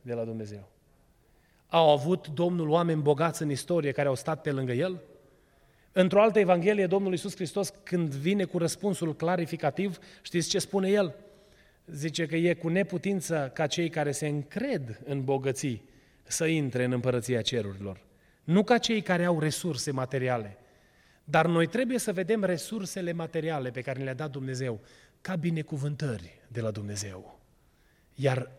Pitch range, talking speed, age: 130-180 Hz, 155 wpm, 30-49